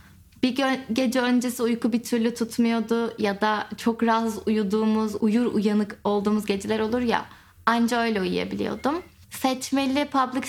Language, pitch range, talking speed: Turkish, 215-265 Hz, 130 wpm